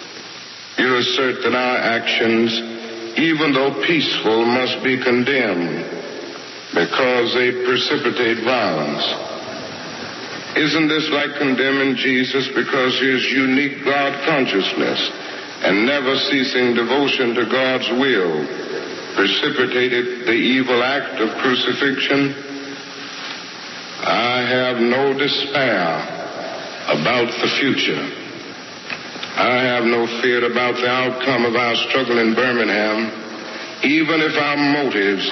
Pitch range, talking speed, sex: 115-135 Hz, 100 wpm, male